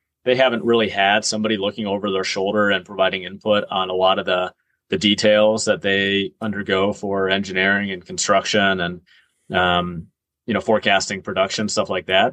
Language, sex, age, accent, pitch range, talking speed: English, male, 30-49, American, 95-105 Hz, 170 wpm